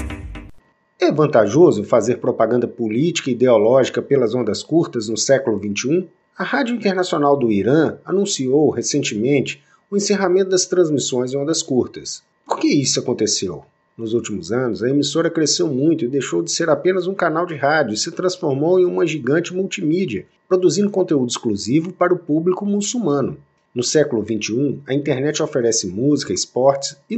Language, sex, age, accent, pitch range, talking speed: Portuguese, male, 50-69, Brazilian, 120-185 Hz, 155 wpm